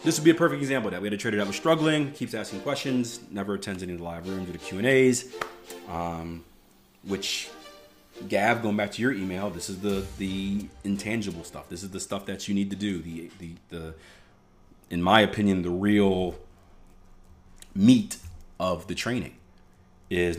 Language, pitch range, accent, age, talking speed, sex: English, 90-110 Hz, American, 30-49, 190 wpm, male